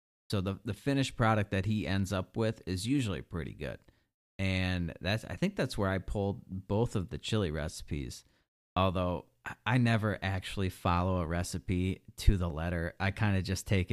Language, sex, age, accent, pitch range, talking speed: English, male, 30-49, American, 90-105 Hz, 180 wpm